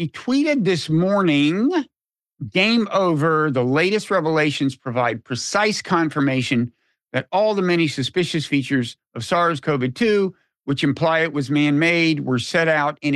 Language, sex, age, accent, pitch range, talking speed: English, male, 50-69, American, 140-185 Hz, 145 wpm